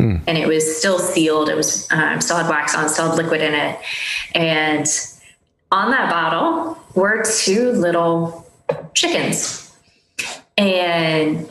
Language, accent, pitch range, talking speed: English, American, 160-215 Hz, 140 wpm